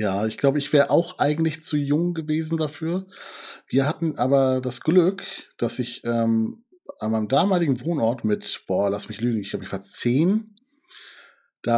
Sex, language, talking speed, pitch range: male, German, 175 wpm, 120-170 Hz